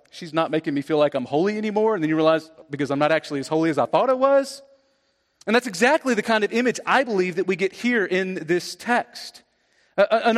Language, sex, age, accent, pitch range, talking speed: English, male, 40-59, American, 175-235 Hz, 235 wpm